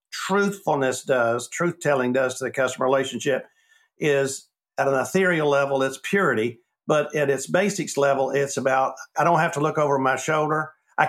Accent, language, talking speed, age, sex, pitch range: American, English, 175 wpm, 50-69, male, 135-170 Hz